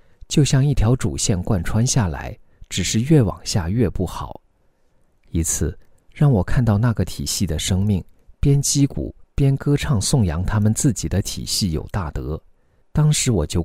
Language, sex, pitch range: Chinese, male, 85-125 Hz